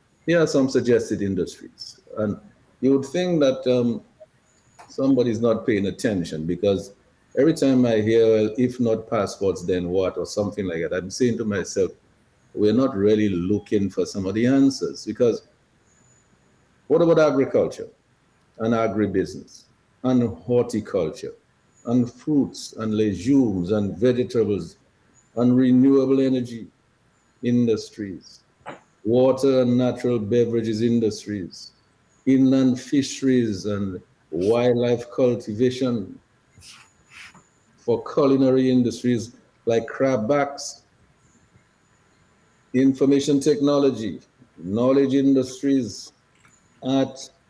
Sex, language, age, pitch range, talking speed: male, English, 60-79, 110-135 Hz, 105 wpm